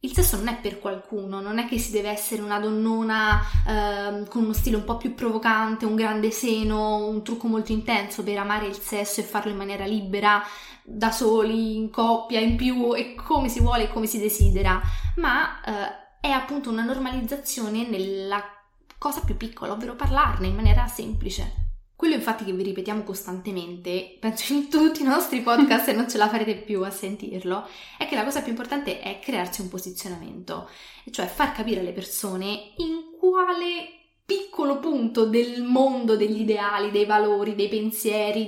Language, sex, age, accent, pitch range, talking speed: English, female, 20-39, Italian, 195-235 Hz, 180 wpm